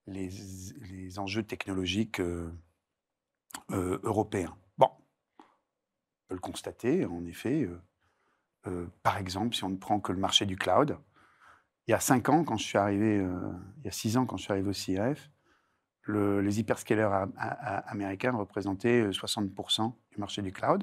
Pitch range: 95-120 Hz